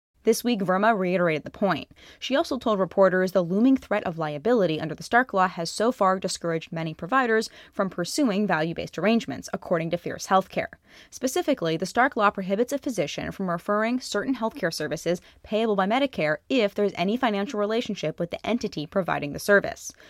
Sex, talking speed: female, 175 wpm